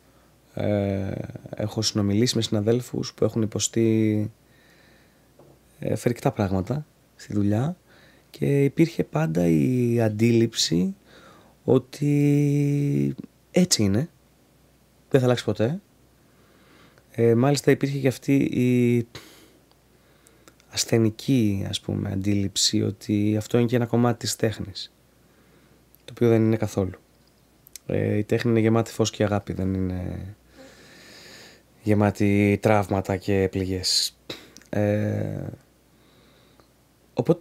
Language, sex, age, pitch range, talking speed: Greek, male, 20-39, 105-125 Hz, 105 wpm